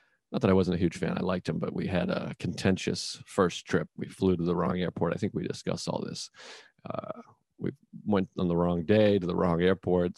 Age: 40-59